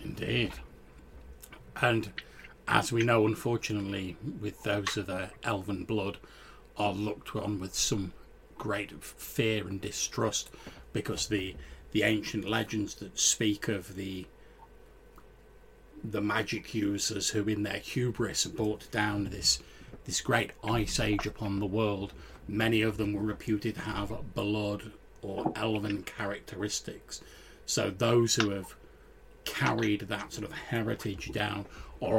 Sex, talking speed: male, 130 wpm